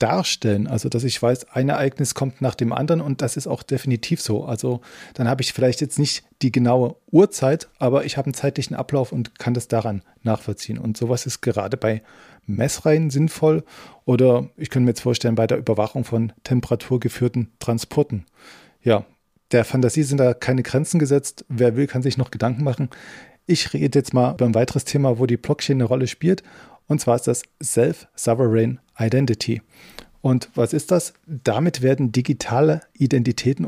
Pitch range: 120-140 Hz